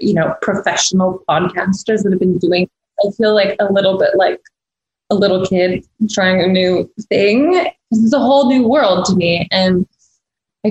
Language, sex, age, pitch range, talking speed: English, female, 20-39, 185-230 Hz, 180 wpm